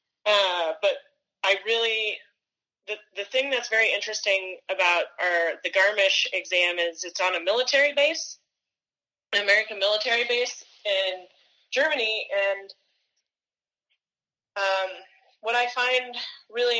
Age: 20-39